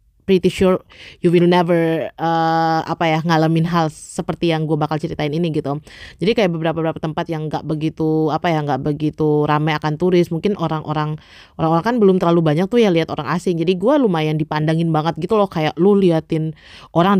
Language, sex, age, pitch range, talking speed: Indonesian, female, 20-39, 155-190 Hz, 190 wpm